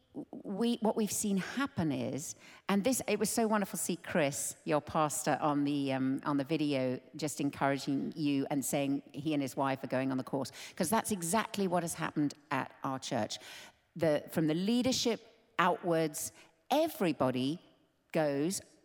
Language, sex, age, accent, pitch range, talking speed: English, female, 50-69, British, 145-205 Hz, 170 wpm